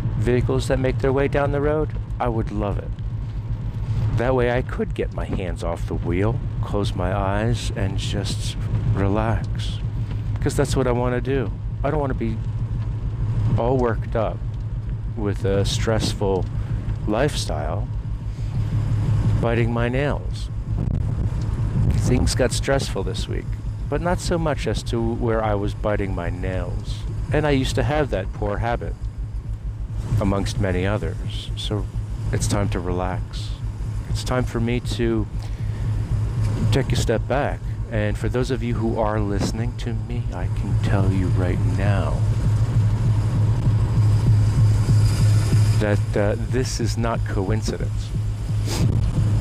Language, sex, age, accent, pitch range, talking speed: English, male, 60-79, American, 105-115 Hz, 140 wpm